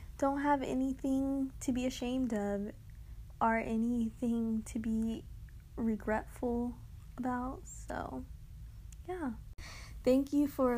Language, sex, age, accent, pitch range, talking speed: English, female, 20-39, American, 225-265 Hz, 100 wpm